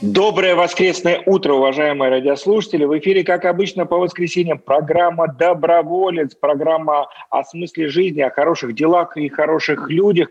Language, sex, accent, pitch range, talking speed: Russian, male, native, 125-165 Hz, 135 wpm